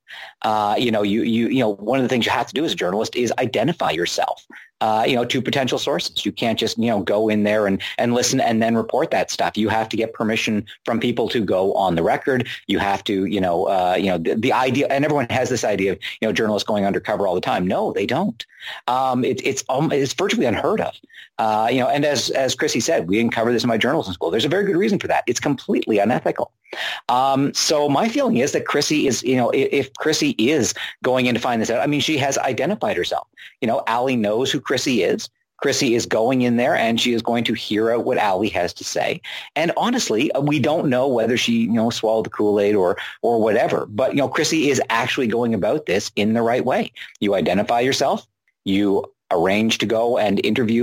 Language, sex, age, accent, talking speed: English, male, 40-59, American, 240 wpm